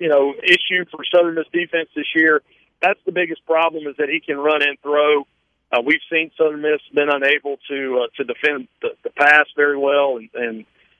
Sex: male